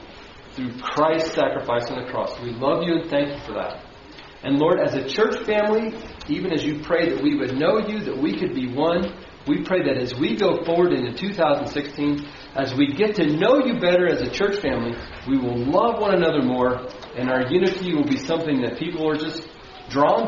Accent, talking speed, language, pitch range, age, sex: American, 210 wpm, English, 130-165 Hz, 40-59, male